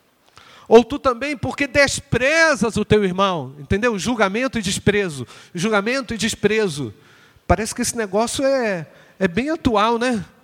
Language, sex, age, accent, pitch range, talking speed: Portuguese, male, 40-59, Brazilian, 145-220 Hz, 140 wpm